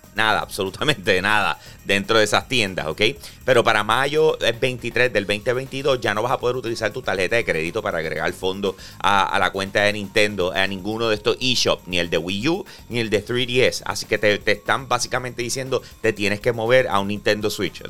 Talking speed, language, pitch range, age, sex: 215 wpm, Spanish, 105-130 Hz, 30-49, male